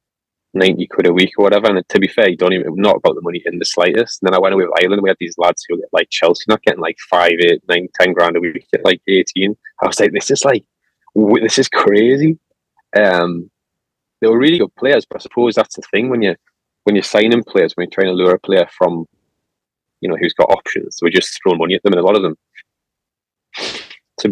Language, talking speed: English, 250 wpm